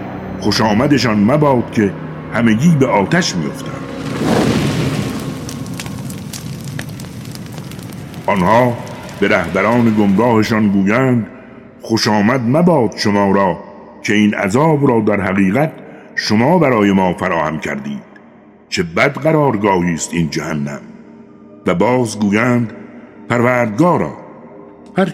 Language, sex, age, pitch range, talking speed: Persian, male, 60-79, 100-130 Hz, 95 wpm